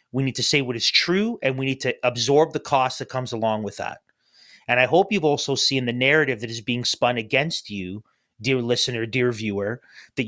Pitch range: 120-155 Hz